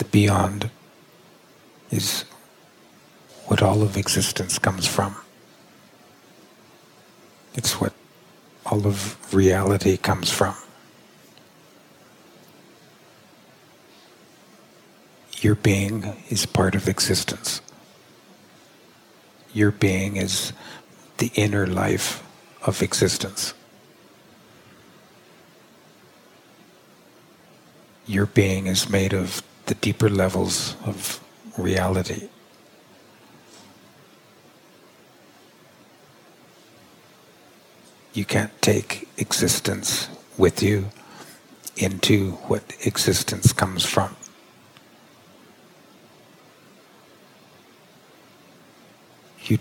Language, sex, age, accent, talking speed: English, male, 50-69, American, 65 wpm